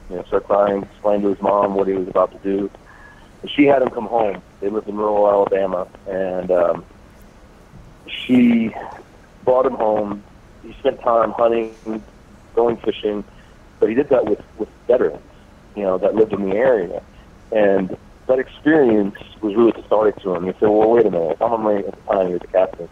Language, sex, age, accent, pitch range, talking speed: English, male, 30-49, American, 95-115 Hz, 185 wpm